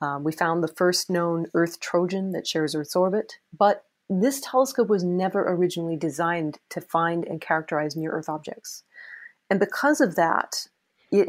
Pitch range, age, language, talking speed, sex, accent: 165-195 Hz, 30-49, English, 160 wpm, female, American